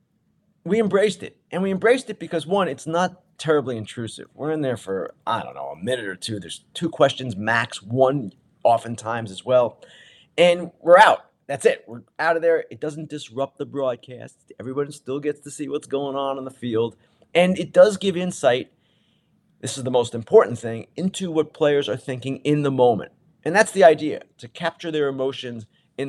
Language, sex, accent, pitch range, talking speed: English, male, American, 130-170 Hz, 195 wpm